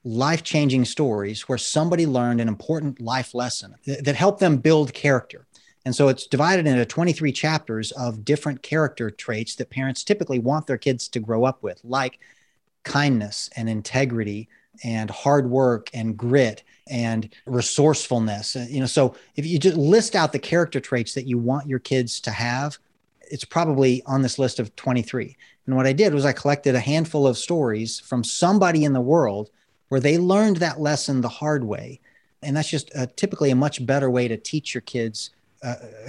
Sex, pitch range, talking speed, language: male, 120-155 Hz, 180 wpm, English